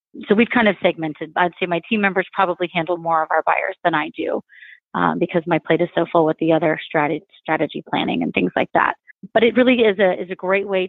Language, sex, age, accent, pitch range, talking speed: English, female, 30-49, American, 170-200 Hz, 250 wpm